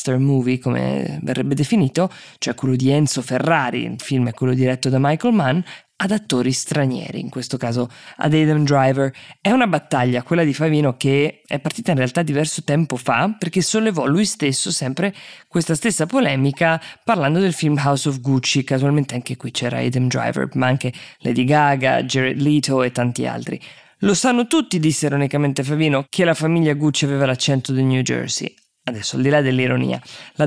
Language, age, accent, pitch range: Italian, 20-39, native, 130-165 Hz